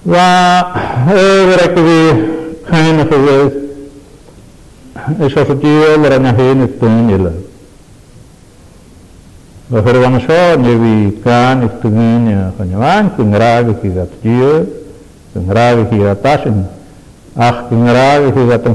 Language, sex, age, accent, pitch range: English, male, 50-69, Indian, 115-150 Hz